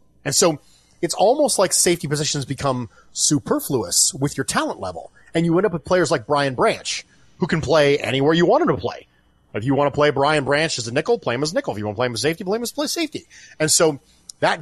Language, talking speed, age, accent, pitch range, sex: English, 250 wpm, 30-49, American, 95-155 Hz, male